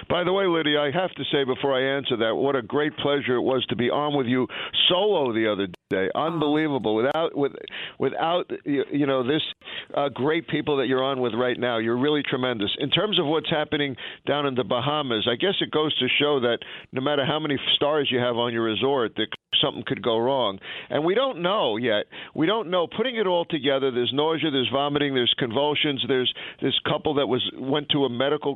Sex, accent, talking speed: male, American, 220 wpm